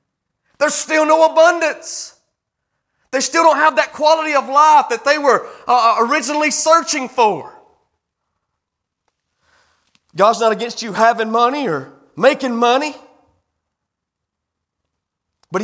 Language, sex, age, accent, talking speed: English, male, 30-49, American, 110 wpm